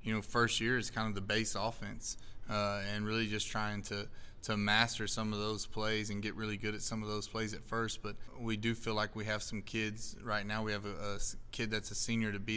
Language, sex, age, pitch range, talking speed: English, male, 20-39, 105-110 Hz, 260 wpm